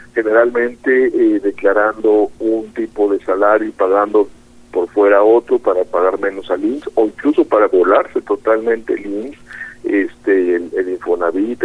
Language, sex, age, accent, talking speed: Spanish, male, 50-69, Mexican, 145 wpm